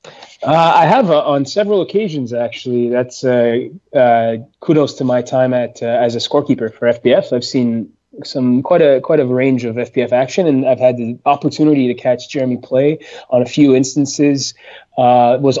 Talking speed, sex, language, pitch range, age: 185 wpm, male, English, 120-135 Hz, 20-39